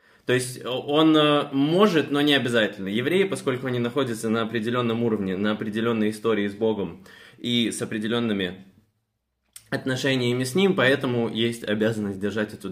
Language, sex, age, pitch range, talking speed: Russian, male, 20-39, 110-140 Hz, 140 wpm